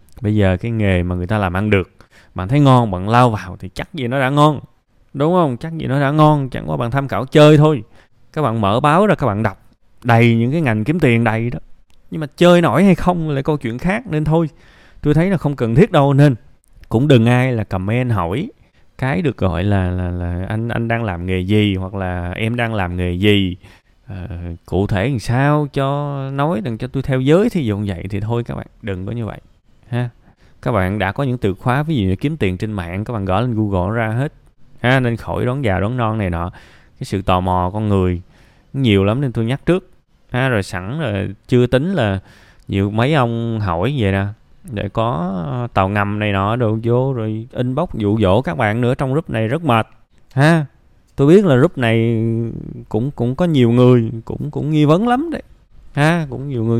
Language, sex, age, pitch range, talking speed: Vietnamese, male, 20-39, 100-140 Hz, 230 wpm